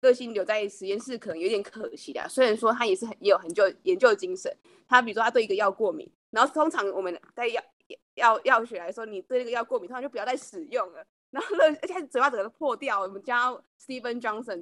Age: 20-39